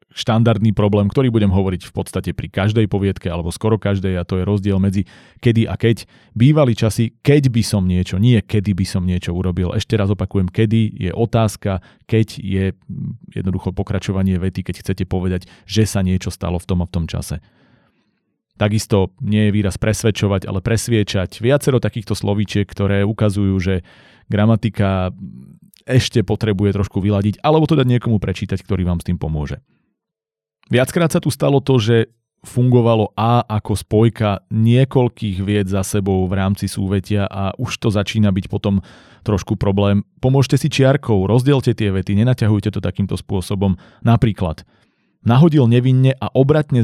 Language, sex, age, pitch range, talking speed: Slovak, male, 30-49, 95-115 Hz, 160 wpm